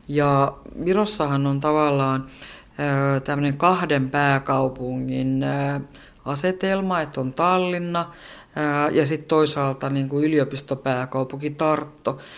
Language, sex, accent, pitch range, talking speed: Finnish, female, native, 135-150 Hz, 80 wpm